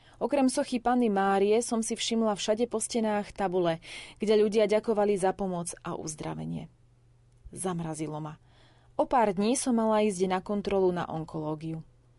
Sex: female